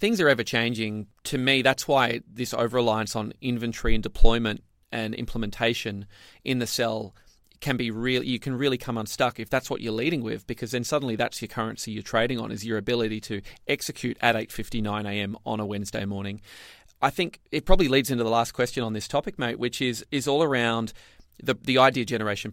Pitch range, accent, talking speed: 110-130 Hz, Australian, 210 wpm